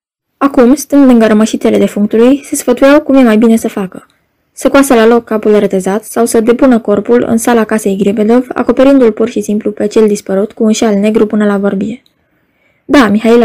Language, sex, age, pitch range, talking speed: Romanian, female, 20-39, 210-250 Hz, 190 wpm